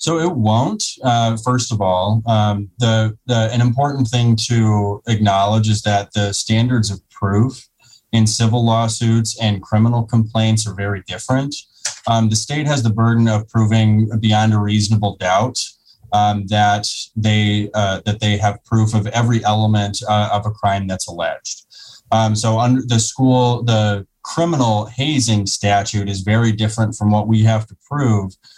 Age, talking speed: 20-39, 160 wpm